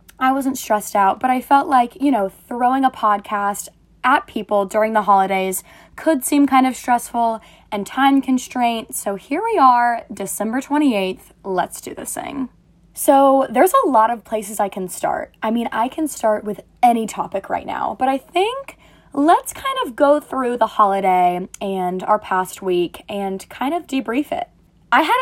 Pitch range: 200-275 Hz